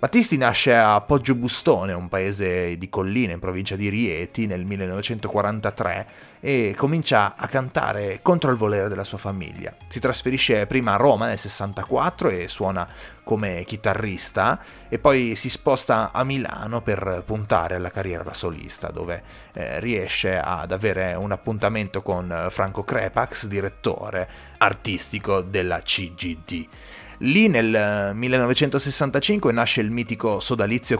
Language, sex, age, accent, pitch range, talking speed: Italian, male, 30-49, native, 95-120 Hz, 130 wpm